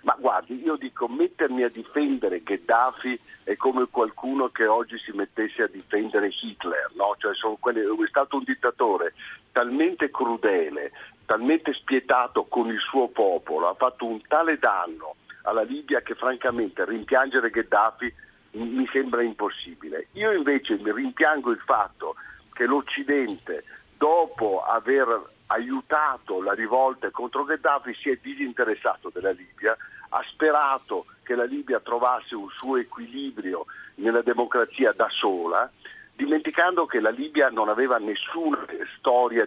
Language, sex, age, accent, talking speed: Italian, male, 50-69, native, 135 wpm